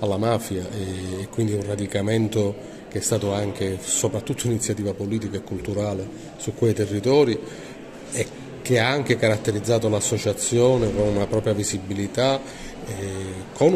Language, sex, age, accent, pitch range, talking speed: Italian, male, 30-49, native, 100-120 Hz, 130 wpm